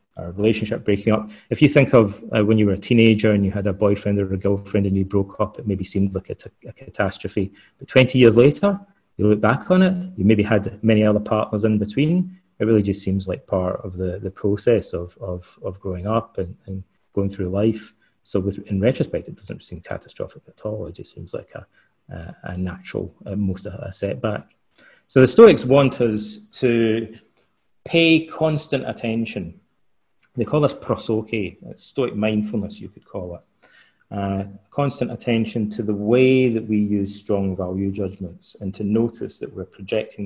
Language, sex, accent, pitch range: English, male, British, 95-115 Hz